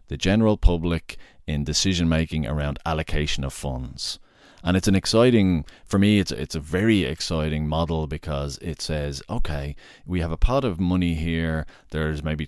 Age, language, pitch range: 30-49, English, 75-95 Hz